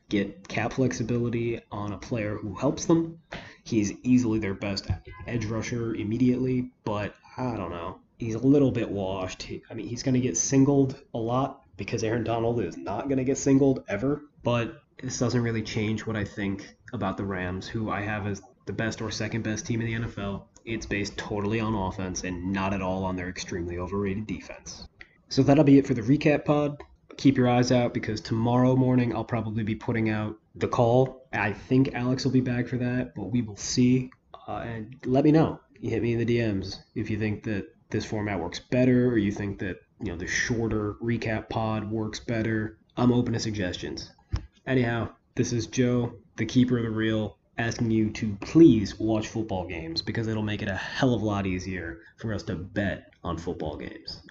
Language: English